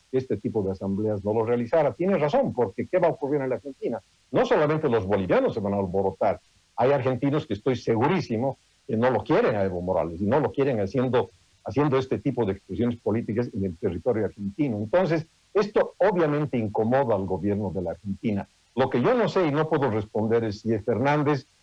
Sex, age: male, 60-79